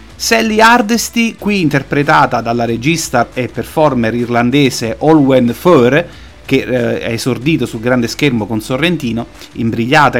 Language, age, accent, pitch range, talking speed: Italian, 30-49, native, 125-170 Hz, 125 wpm